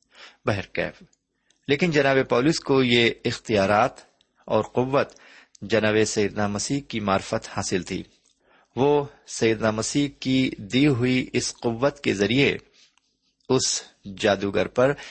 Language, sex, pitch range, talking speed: Urdu, male, 100-130 Hz, 115 wpm